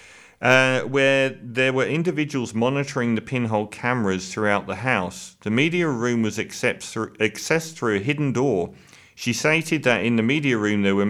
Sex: male